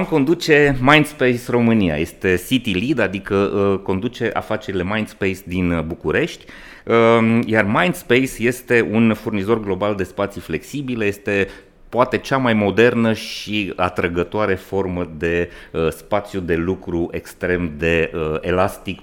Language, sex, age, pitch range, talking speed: Romanian, male, 30-49, 90-125 Hz, 115 wpm